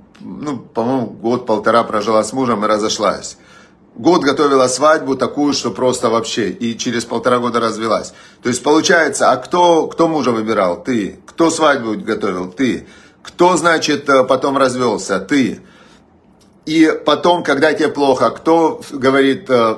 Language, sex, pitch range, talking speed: Russian, male, 115-145 Hz, 135 wpm